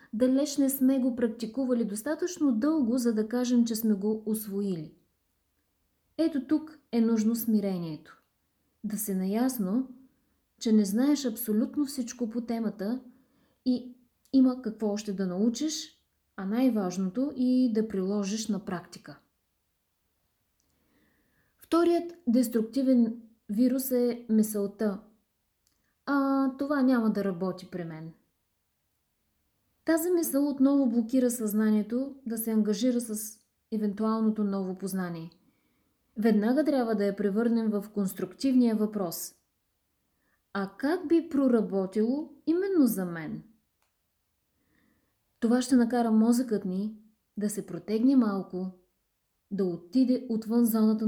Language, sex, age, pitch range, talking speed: Bulgarian, female, 20-39, 195-255 Hz, 110 wpm